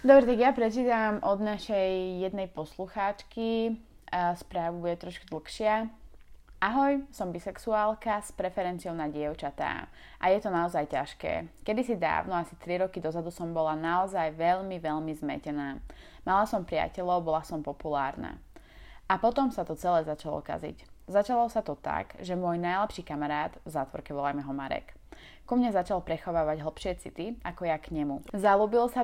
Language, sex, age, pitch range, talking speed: Slovak, female, 20-39, 160-210 Hz, 155 wpm